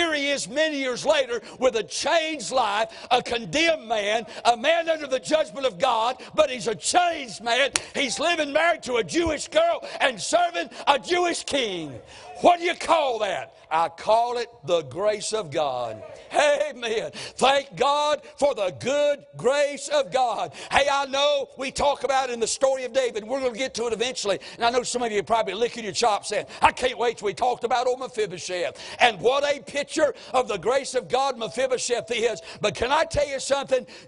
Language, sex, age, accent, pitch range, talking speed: English, male, 60-79, American, 235-300 Hz, 200 wpm